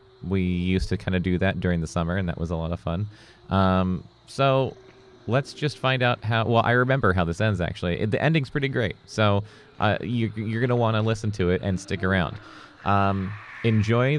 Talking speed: 205 wpm